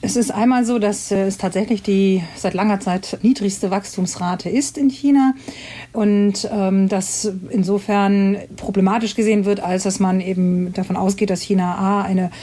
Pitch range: 180-210 Hz